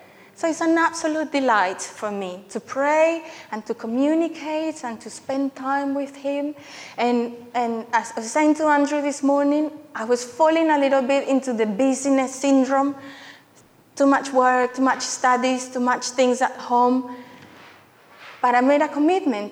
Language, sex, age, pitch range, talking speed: English, female, 30-49, 245-295 Hz, 165 wpm